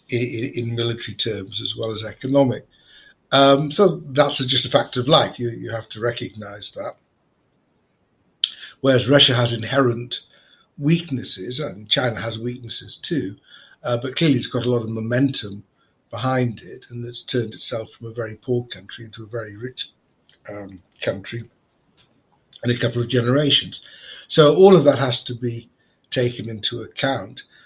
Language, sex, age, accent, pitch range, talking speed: English, male, 60-79, British, 115-140 Hz, 165 wpm